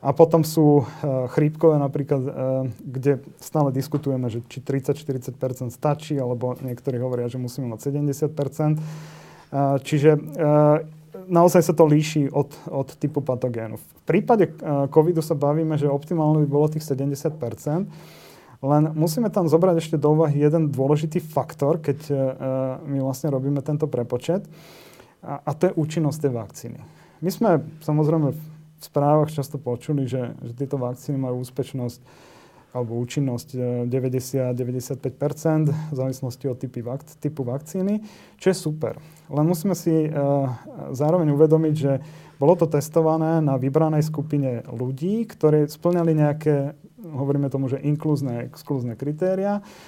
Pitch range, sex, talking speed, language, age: 135-160 Hz, male, 130 wpm, Slovak, 30-49